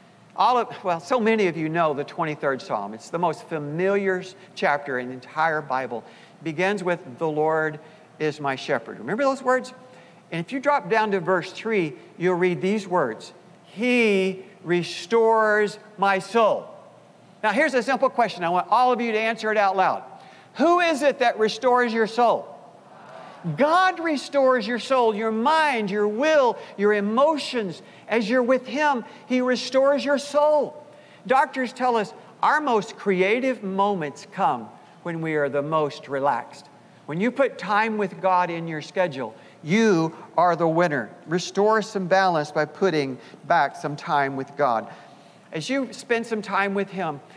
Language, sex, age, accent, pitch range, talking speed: English, male, 60-79, American, 165-235 Hz, 165 wpm